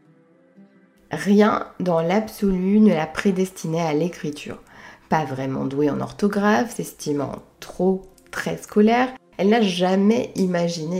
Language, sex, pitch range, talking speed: French, female, 160-215 Hz, 115 wpm